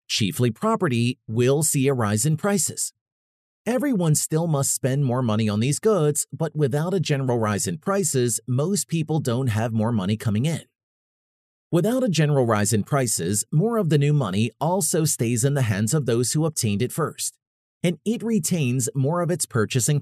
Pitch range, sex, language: 115-160 Hz, male, English